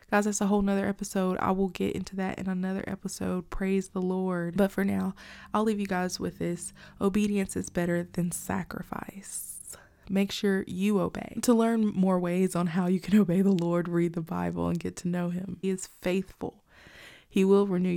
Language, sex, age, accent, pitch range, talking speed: English, female, 20-39, American, 180-210 Hz, 200 wpm